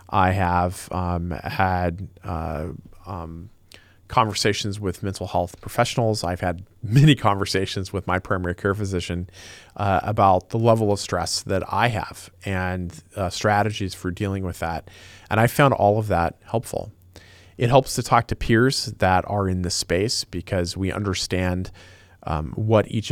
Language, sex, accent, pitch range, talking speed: English, male, American, 90-110 Hz, 155 wpm